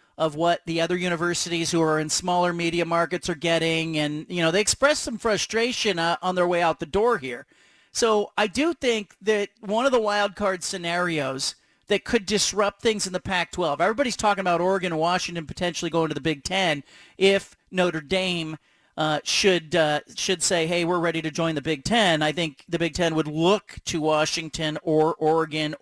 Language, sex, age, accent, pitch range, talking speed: English, male, 40-59, American, 160-200 Hz, 200 wpm